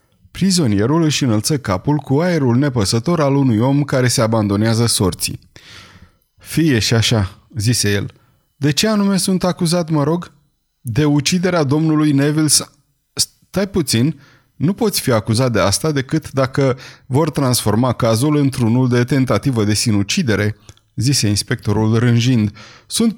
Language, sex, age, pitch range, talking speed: Romanian, male, 30-49, 110-150 Hz, 135 wpm